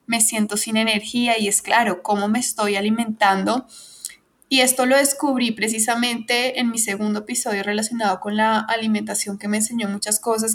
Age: 20-39